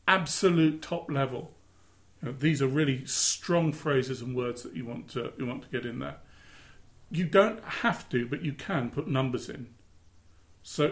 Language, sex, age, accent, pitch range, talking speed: English, male, 40-59, British, 100-155 Hz, 170 wpm